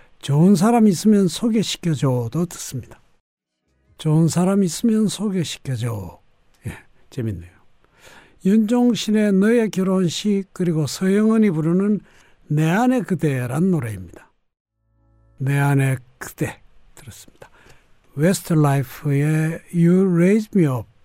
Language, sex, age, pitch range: Korean, male, 60-79, 130-195 Hz